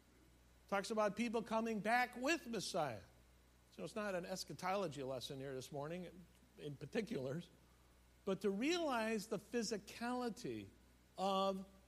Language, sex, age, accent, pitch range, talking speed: English, male, 60-79, American, 135-215 Hz, 120 wpm